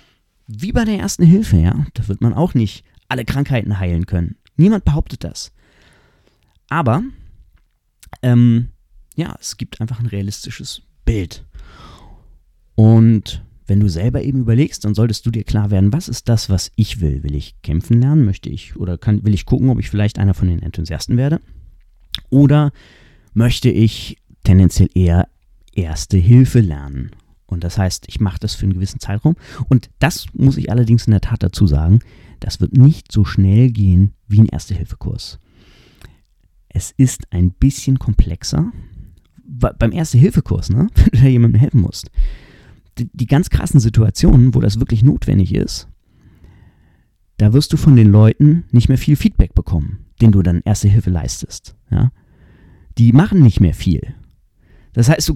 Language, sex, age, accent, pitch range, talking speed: German, male, 30-49, German, 90-125 Hz, 160 wpm